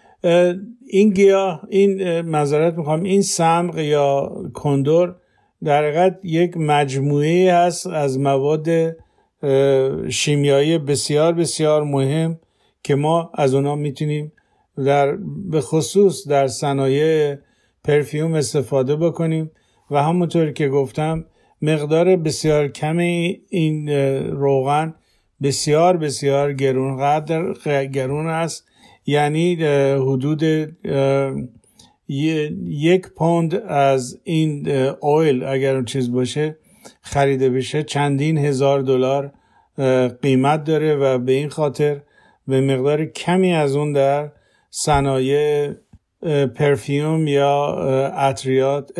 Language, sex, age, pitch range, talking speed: Persian, male, 50-69, 140-160 Hz, 95 wpm